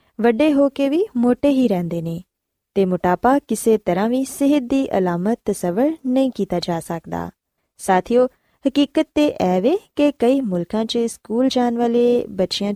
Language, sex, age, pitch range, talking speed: Punjabi, female, 20-39, 185-275 Hz, 155 wpm